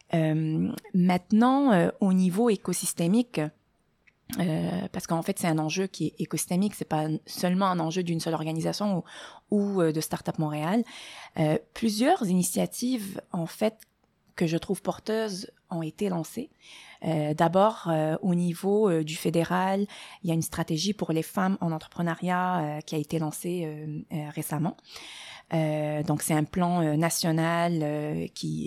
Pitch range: 160-200 Hz